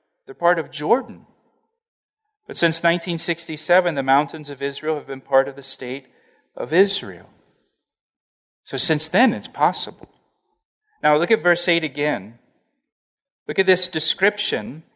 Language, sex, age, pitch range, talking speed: English, male, 40-59, 135-175 Hz, 135 wpm